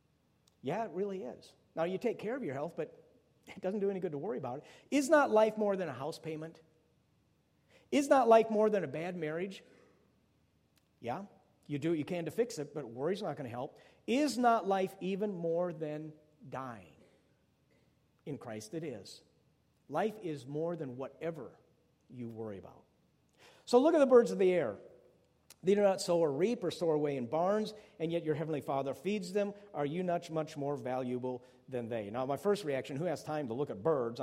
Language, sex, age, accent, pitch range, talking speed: English, male, 50-69, American, 145-195 Hz, 205 wpm